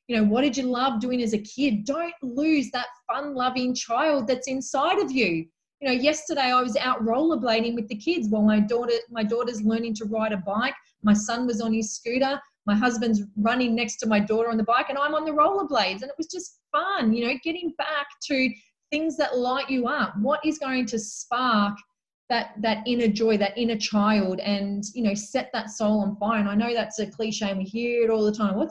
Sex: female